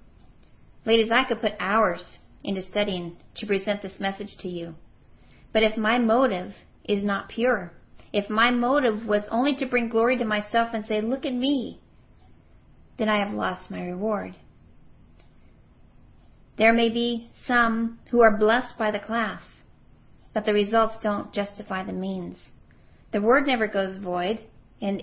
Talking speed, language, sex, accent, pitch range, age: 155 wpm, English, female, American, 195-240 Hz, 40-59